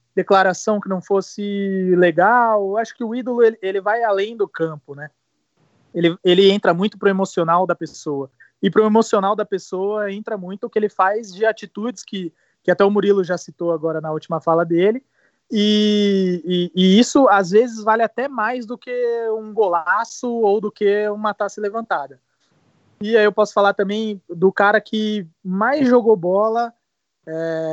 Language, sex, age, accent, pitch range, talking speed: Portuguese, male, 20-39, Brazilian, 185-220 Hz, 175 wpm